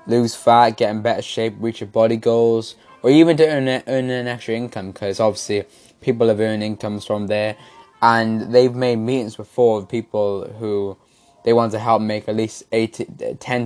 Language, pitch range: English, 100-120 Hz